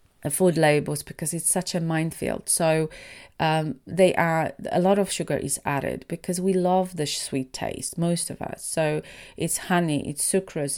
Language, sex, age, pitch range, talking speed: English, female, 30-49, 140-175 Hz, 180 wpm